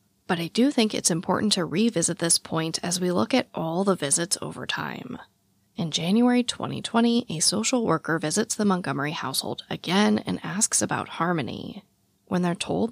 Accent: American